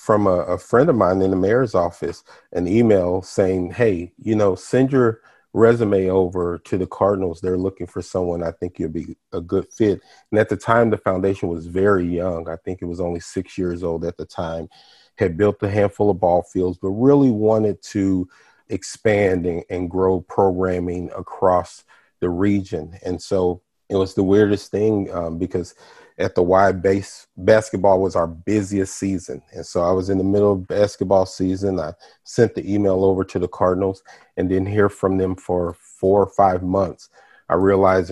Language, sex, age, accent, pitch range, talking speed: English, male, 30-49, American, 90-100 Hz, 190 wpm